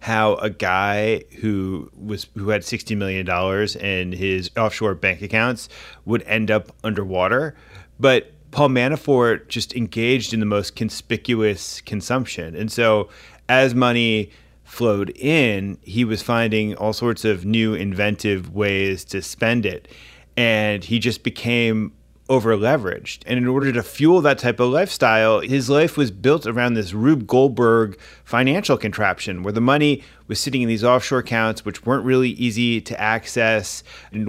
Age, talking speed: 30-49, 150 wpm